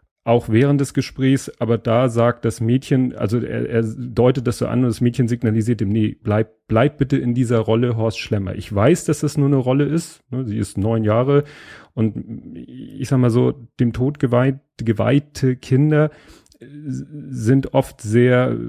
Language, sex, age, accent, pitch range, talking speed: German, male, 40-59, German, 110-130 Hz, 175 wpm